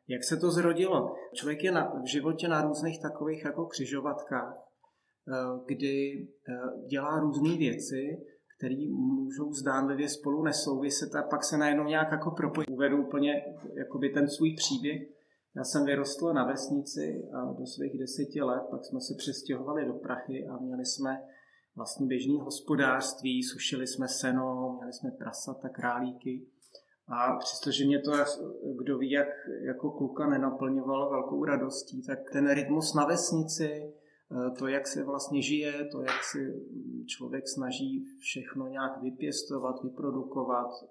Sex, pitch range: male, 130-150 Hz